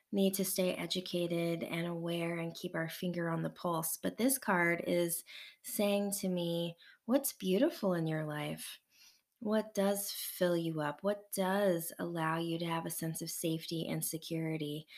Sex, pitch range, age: female, 170-200 Hz, 20-39